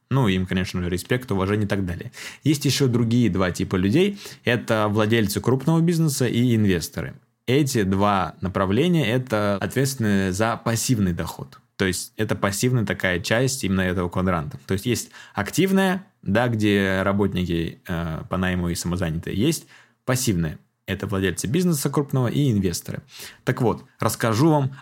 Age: 20-39